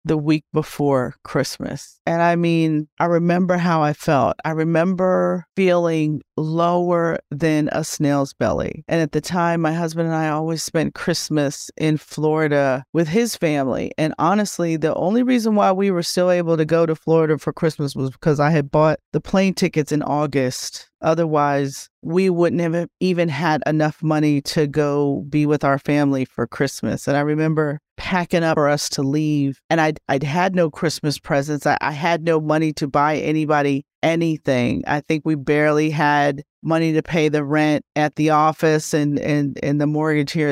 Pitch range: 145-165 Hz